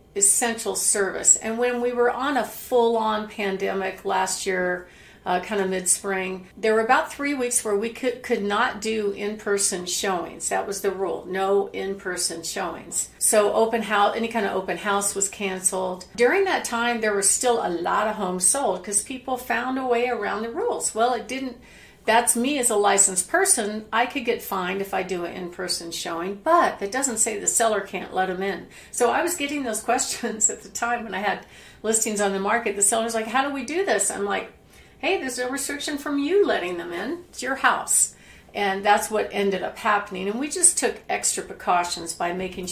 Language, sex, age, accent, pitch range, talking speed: English, female, 50-69, American, 195-240 Hz, 205 wpm